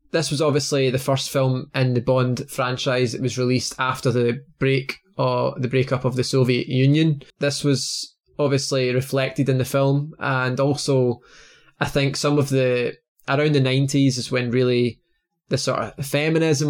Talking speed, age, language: 170 wpm, 20-39, English